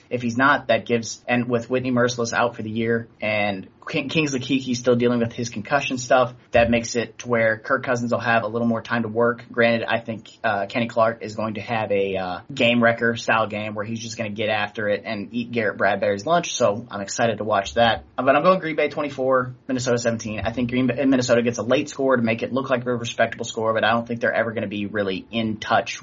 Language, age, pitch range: English, 30-49, 115-130 Hz